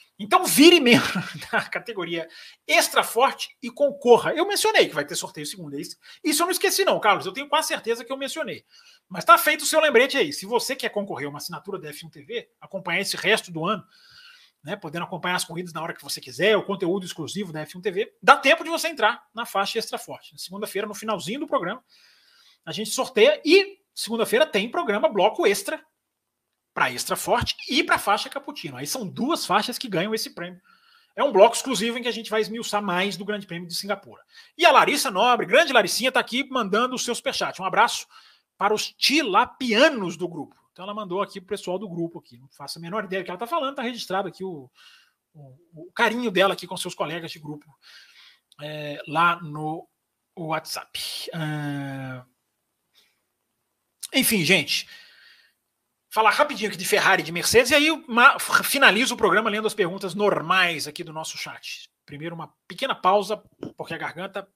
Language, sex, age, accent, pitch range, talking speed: Portuguese, male, 30-49, Brazilian, 175-270 Hz, 195 wpm